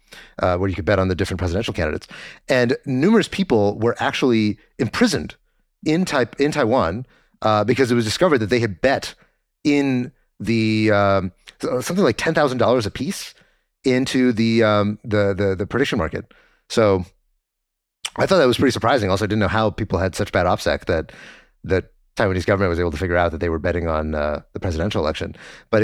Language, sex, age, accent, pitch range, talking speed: English, male, 30-49, American, 105-155 Hz, 195 wpm